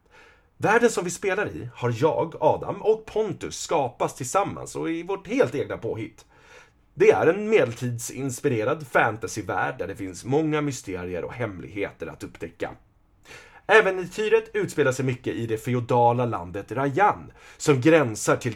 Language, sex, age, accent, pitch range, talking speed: Swedish, male, 30-49, native, 120-195 Hz, 145 wpm